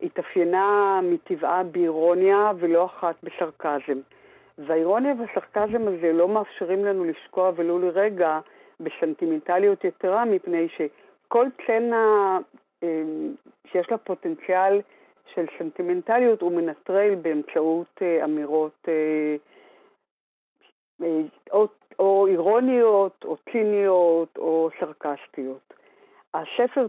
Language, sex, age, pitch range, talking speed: Hebrew, female, 50-69, 160-220 Hz, 80 wpm